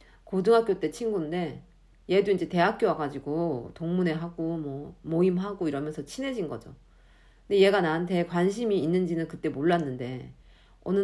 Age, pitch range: 40-59, 150-200 Hz